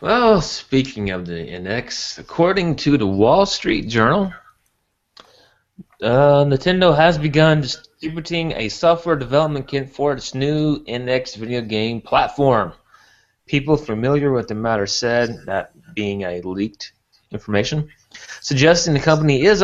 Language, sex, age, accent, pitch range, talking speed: English, male, 30-49, American, 115-160 Hz, 130 wpm